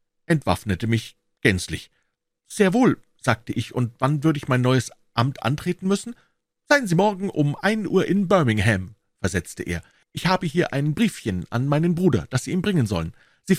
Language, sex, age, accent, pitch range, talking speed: German, male, 50-69, German, 115-175 Hz, 175 wpm